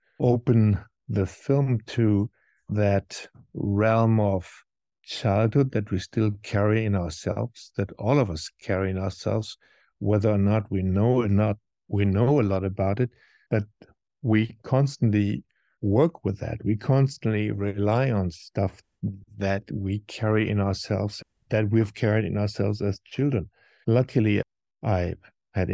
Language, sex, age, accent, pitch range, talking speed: English, male, 60-79, German, 100-120 Hz, 140 wpm